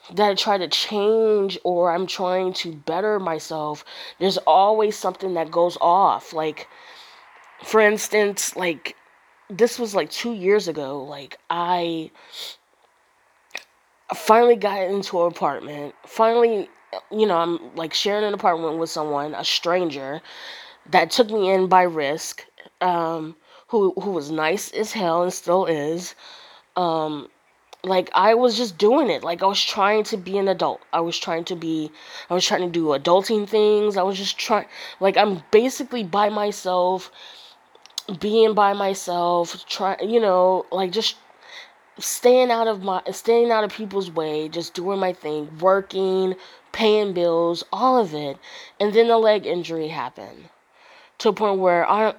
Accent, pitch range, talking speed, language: American, 170-215 Hz, 155 wpm, English